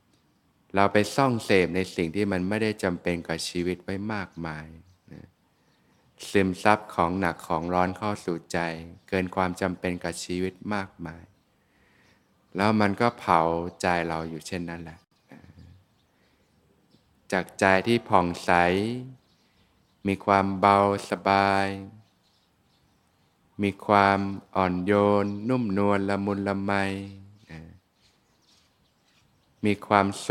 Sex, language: male, Thai